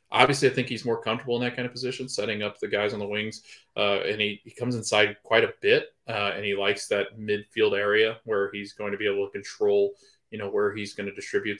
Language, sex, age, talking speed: English, male, 20-39, 255 wpm